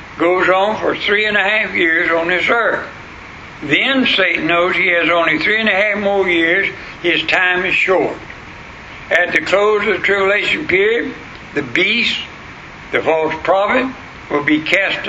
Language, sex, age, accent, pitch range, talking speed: English, male, 60-79, American, 170-215 Hz, 165 wpm